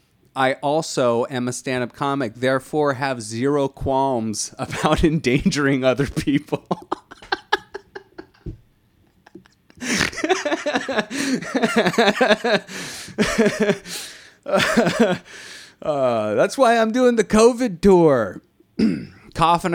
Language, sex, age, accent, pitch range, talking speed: English, male, 30-49, American, 105-165 Hz, 70 wpm